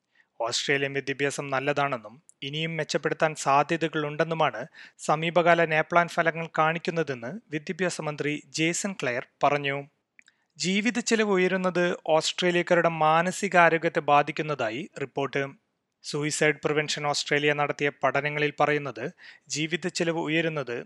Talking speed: 85 wpm